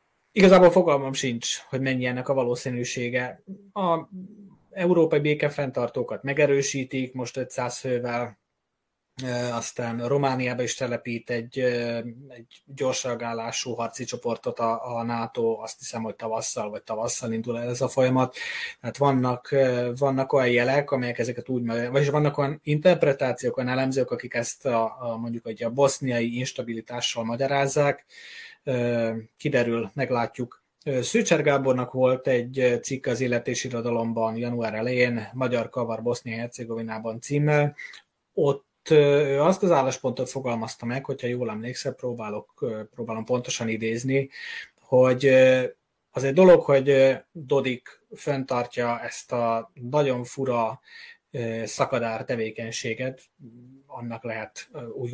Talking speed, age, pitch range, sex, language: 115 wpm, 20-39, 120-140 Hz, male, Hungarian